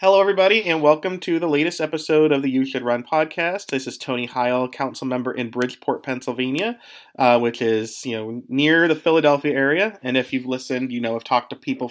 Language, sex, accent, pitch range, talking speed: English, male, American, 125-155 Hz, 210 wpm